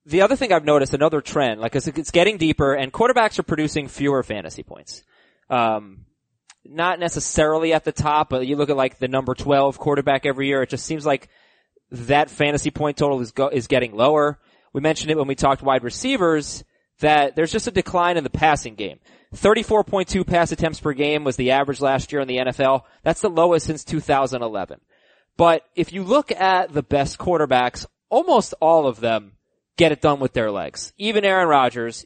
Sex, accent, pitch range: male, American, 135-170 Hz